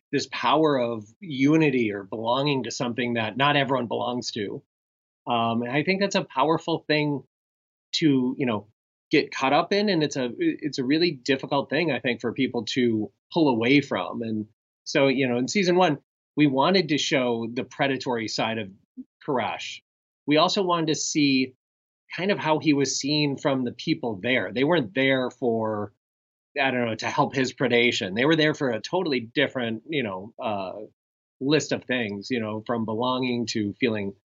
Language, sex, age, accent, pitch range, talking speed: English, male, 30-49, American, 115-150 Hz, 185 wpm